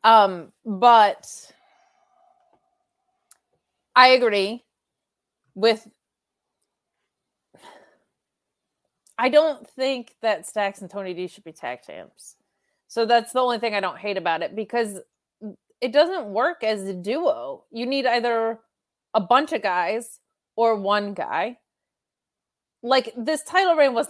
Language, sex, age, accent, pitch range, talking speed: English, female, 30-49, American, 195-245 Hz, 120 wpm